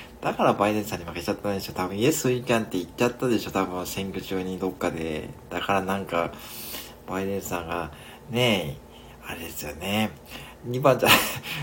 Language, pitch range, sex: Japanese, 95-145 Hz, male